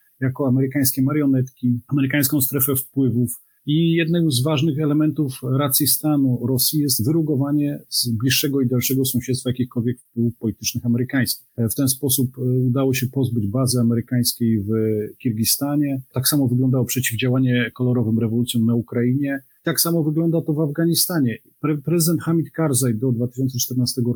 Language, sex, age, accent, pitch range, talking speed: Polish, male, 40-59, native, 120-145 Hz, 135 wpm